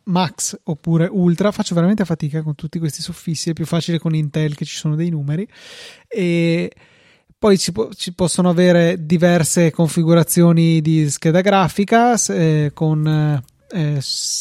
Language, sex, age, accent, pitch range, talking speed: Italian, male, 30-49, native, 160-185 Hz, 145 wpm